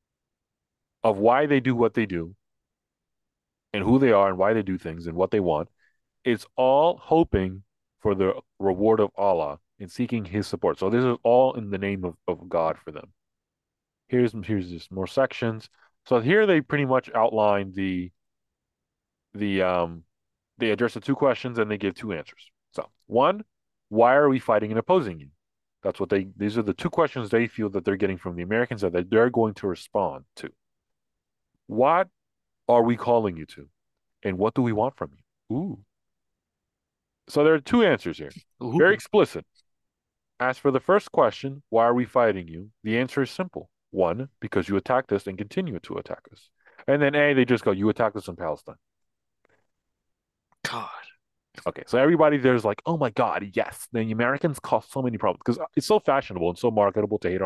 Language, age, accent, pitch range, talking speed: English, 30-49, American, 100-130 Hz, 190 wpm